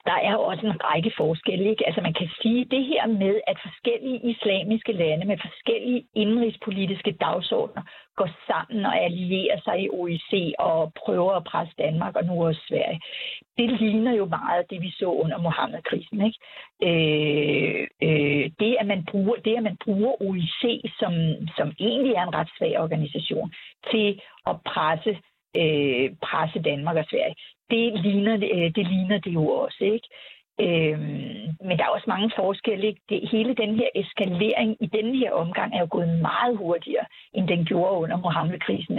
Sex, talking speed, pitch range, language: female, 165 wpm, 165-220 Hz, Danish